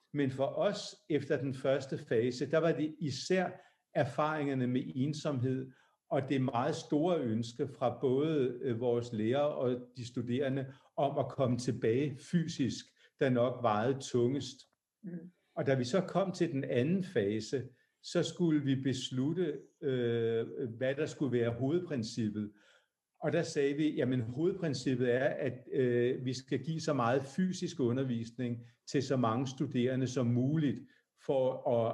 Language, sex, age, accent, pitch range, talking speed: Swedish, male, 60-79, Danish, 125-155 Hz, 145 wpm